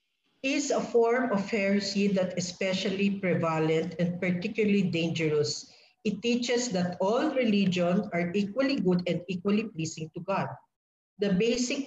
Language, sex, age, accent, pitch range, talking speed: English, female, 50-69, Filipino, 175-225 Hz, 130 wpm